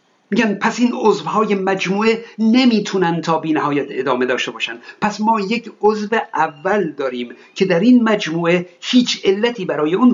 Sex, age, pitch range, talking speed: male, 50-69, 185-235 Hz, 150 wpm